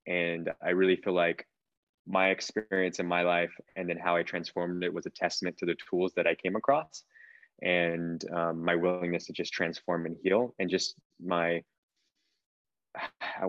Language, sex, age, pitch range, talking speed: English, male, 20-39, 85-115 Hz, 175 wpm